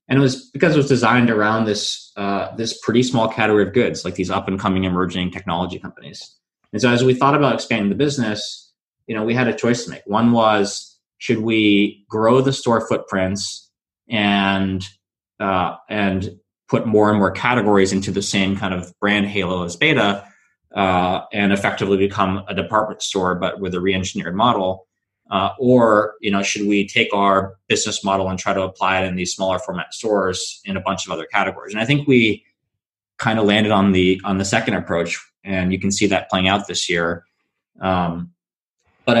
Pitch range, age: 95-115 Hz, 20-39